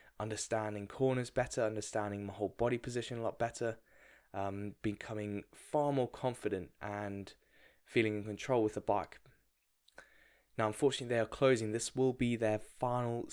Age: 10-29